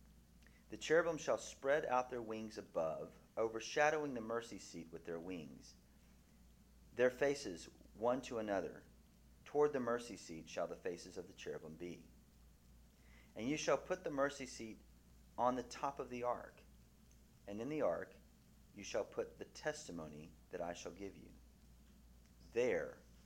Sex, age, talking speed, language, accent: male, 30-49, 150 wpm, English, American